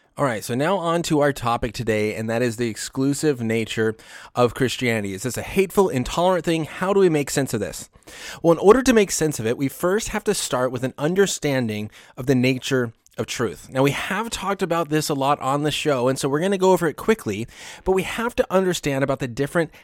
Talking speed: 240 wpm